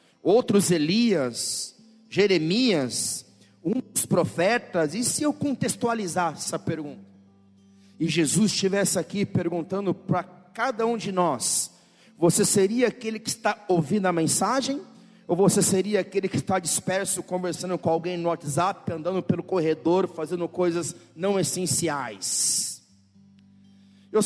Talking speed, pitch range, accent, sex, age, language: 120 wpm, 155-210 Hz, Brazilian, male, 40-59, Portuguese